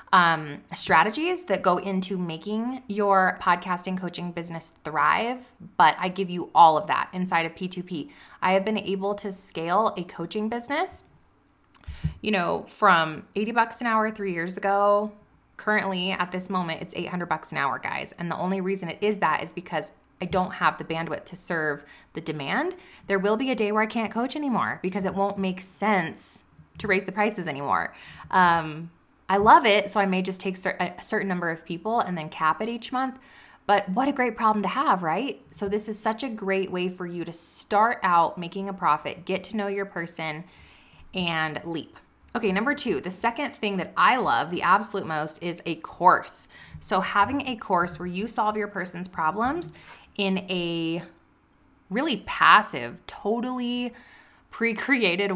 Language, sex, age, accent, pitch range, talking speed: English, female, 20-39, American, 170-215 Hz, 185 wpm